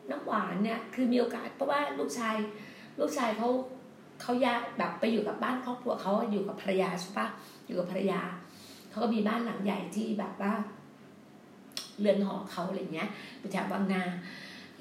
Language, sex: Thai, female